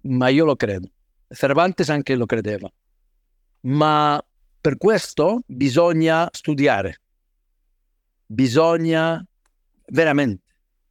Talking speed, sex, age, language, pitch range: 85 wpm, male, 50-69, Italian, 130-170 Hz